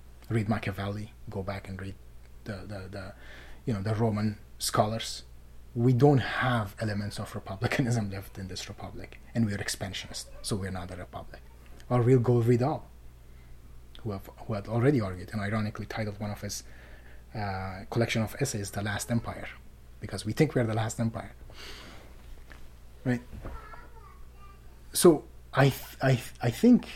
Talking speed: 165 wpm